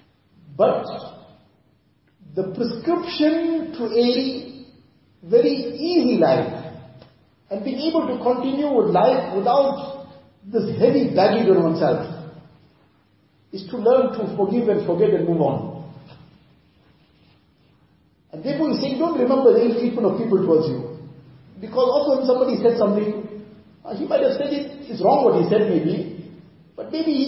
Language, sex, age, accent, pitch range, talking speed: English, male, 50-69, Indian, 160-245 Hz, 140 wpm